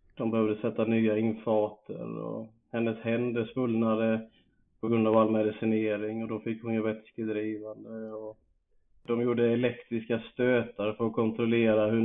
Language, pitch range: Swedish, 110-120 Hz